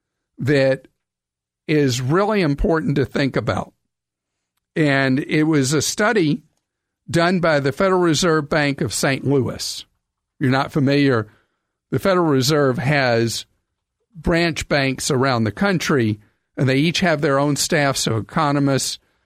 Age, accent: 50-69, American